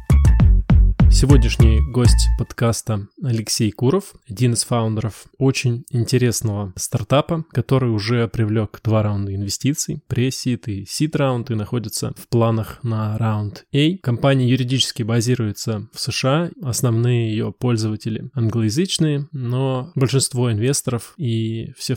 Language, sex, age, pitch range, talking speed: Russian, male, 20-39, 110-135 Hz, 110 wpm